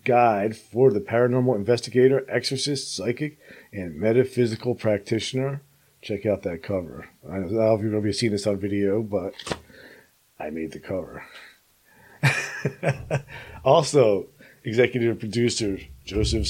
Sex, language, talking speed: male, English, 120 wpm